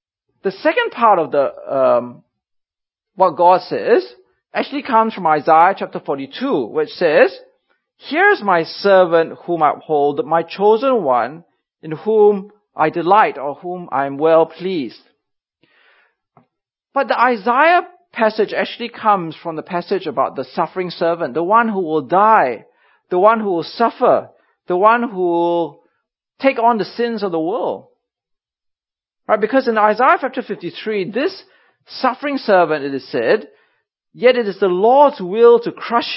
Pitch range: 165-235 Hz